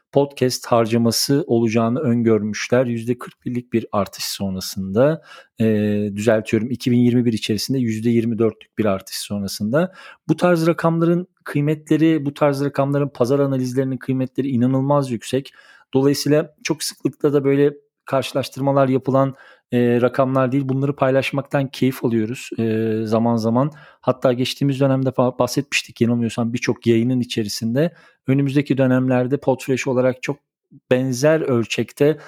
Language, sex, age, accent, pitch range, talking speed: Turkish, male, 40-59, native, 115-145 Hz, 110 wpm